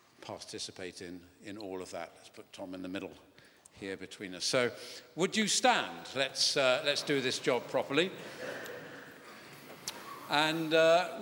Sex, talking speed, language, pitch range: male, 150 wpm, English, 105-145 Hz